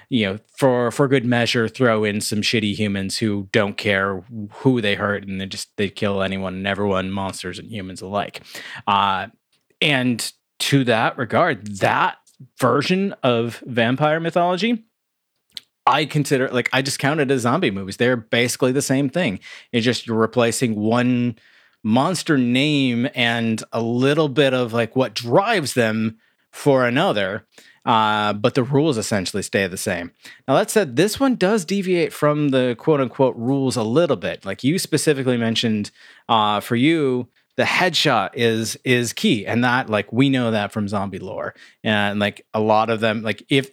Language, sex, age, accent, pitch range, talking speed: English, male, 30-49, American, 105-135 Hz, 170 wpm